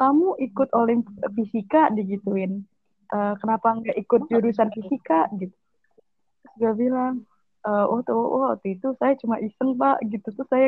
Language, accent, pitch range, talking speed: Indonesian, native, 205-250 Hz, 150 wpm